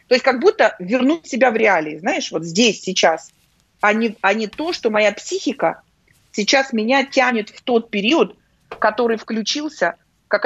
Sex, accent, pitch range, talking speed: female, native, 195-250 Hz, 160 wpm